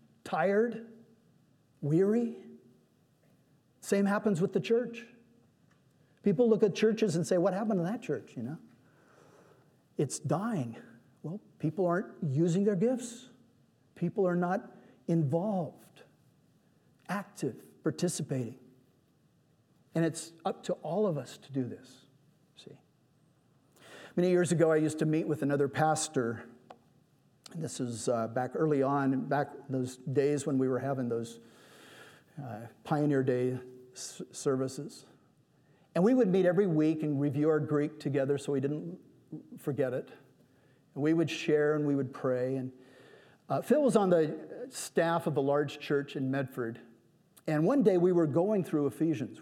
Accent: American